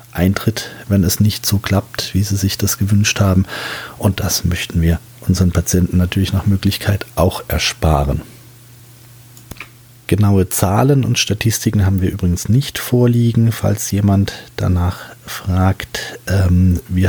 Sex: male